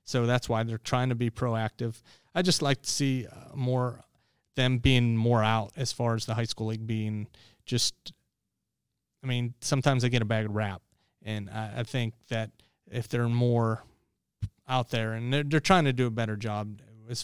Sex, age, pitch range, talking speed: male, 30-49, 110-125 Hz, 195 wpm